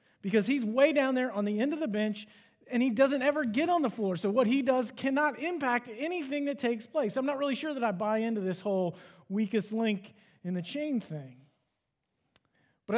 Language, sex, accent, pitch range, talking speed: English, male, American, 190-240 Hz, 215 wpm